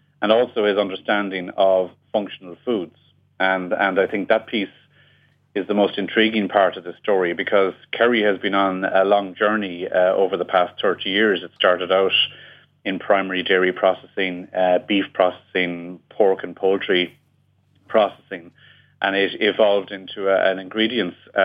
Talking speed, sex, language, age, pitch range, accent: 155 wpm, male, English, 40-59, 90-100 Hz, Irish